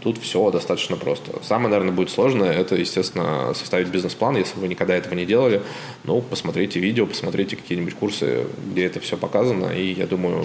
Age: 20-39